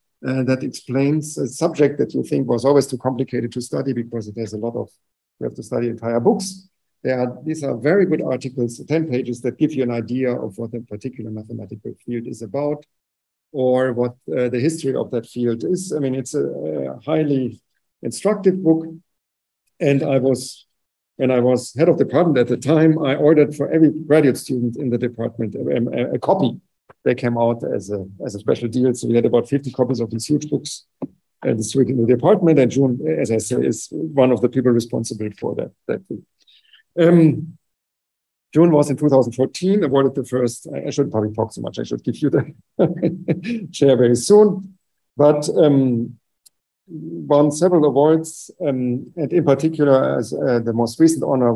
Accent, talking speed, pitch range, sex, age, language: German, 185 wpm, 120-155 Hz, male, 50-69, English